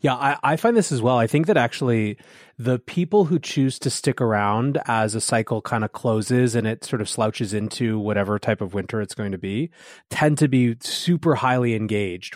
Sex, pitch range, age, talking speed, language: male, 105-135 Hz, 30-49, 215 wpm, English